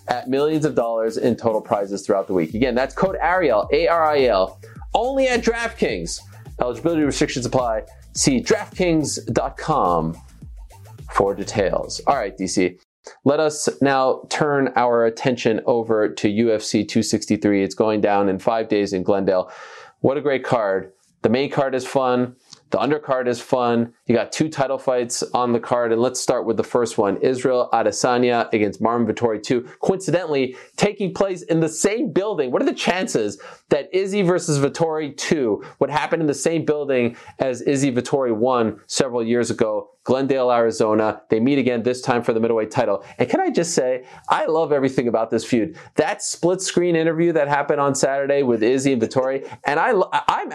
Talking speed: 175 wpm